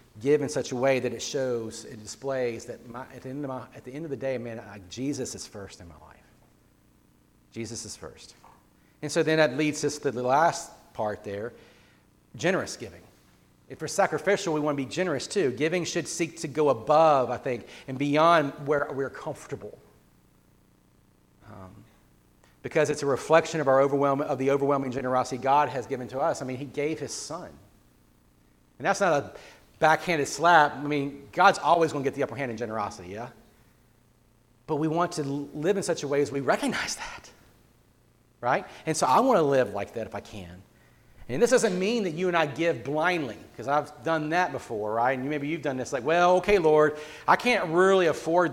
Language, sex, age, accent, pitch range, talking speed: English, male, 40-59, American, 115-160 Hz, 195 wpm